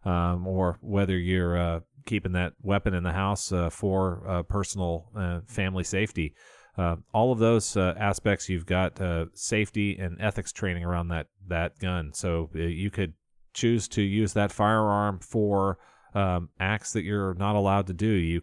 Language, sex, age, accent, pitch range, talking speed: English, male, 30-49, American, 90-105 Hz, 175 wpm